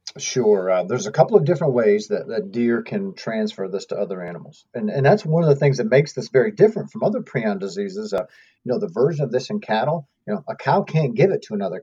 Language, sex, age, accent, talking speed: English, male, 40-59, American, 260 wpm